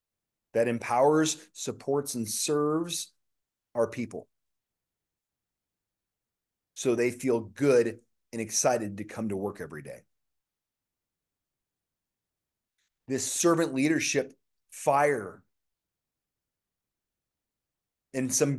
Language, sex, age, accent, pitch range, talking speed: English, male, 30-49, American, 115-145 Hz, 80 wpm